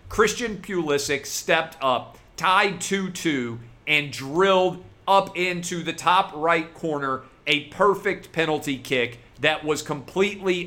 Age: 40-59